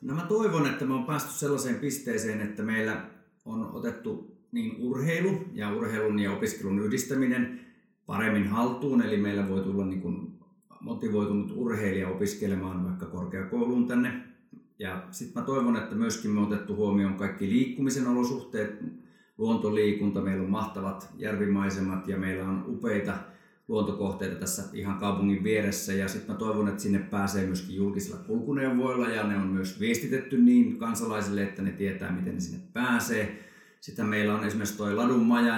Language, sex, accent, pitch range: Finnish, male, native, 100-140 Hz